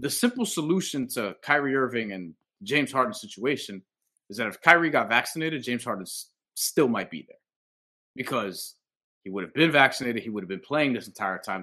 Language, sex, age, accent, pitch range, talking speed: English, male, 30-49, American, 100-145 Hz, 185 wpm